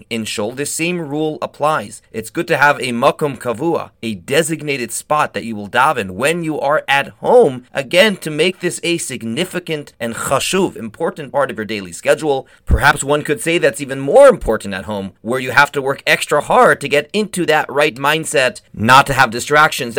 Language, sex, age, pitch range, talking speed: English, male, 30-49, 115-170 Hz, 200 wpm